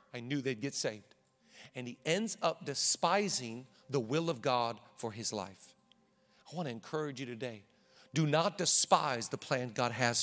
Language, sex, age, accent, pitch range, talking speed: English, male, 40-59, American, 160-215 Hz, 175 wpm